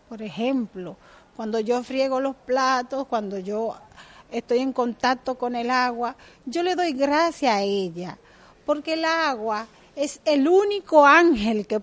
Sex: female